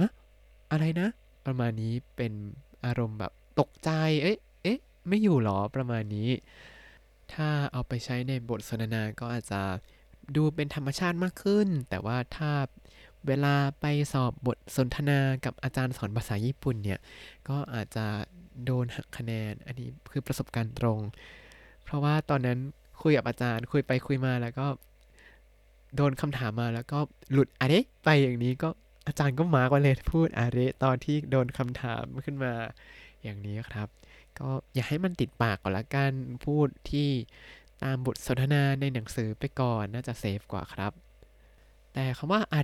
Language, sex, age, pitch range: Thai, male, 20-39, 115-145 Hz